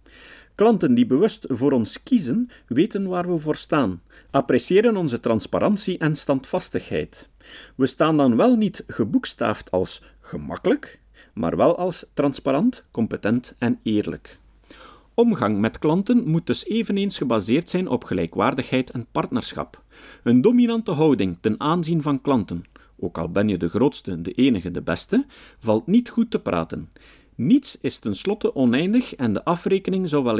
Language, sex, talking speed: Dutch, male, 145 wpm